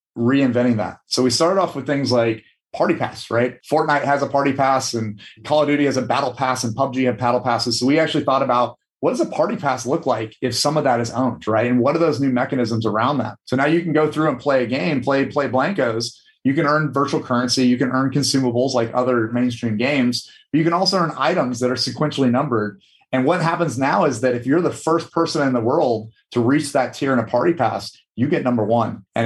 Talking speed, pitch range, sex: 245 wpm, 120-145 Hz, male